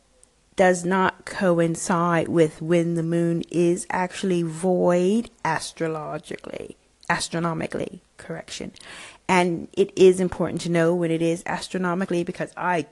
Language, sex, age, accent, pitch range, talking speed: English, female, 40-59, American, 165-205 Hz, 115 wpm